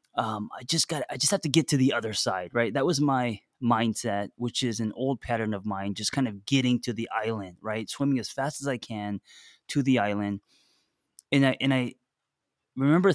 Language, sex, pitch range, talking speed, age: English, male, 110-140 Hz, 215 wpm, 20-39